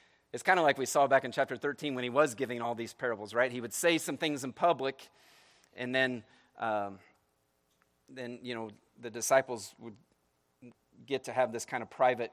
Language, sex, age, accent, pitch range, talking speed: English, male, 40-59, American, 110-145 Hz, 200 wpm